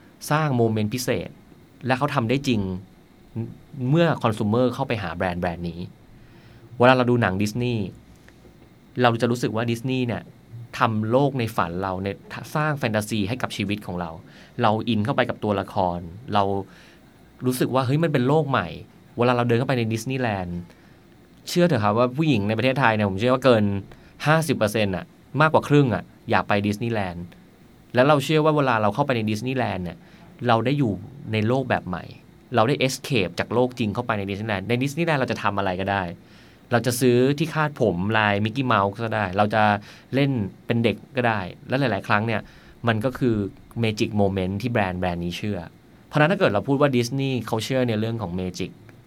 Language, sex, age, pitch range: Thai, male, 20-39, 100-130 Hz